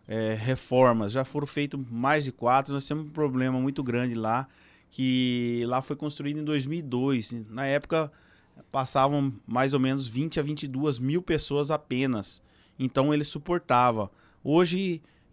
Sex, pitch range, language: male, 135-170 Hz, Portuguese